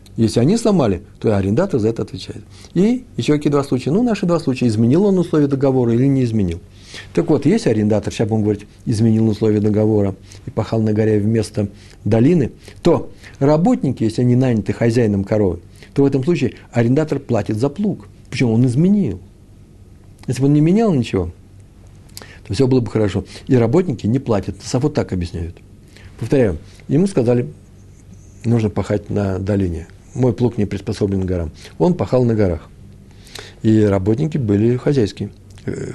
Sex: male